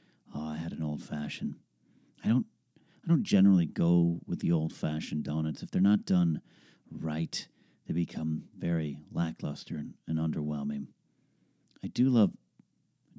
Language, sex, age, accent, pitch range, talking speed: English, male, 40-59, American, 75-125 Hz, 145 wpm